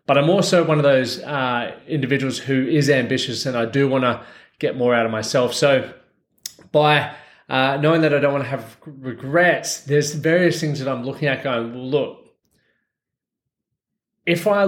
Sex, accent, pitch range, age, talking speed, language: male, Australian, 130-160 Hz, 20-39, 175 wpm, English